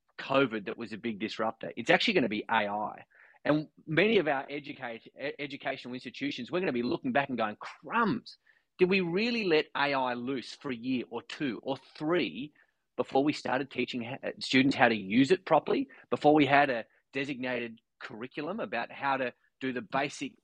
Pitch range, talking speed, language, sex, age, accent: 125-155 Hz, 175 wpm, English, male, 30-49, Australian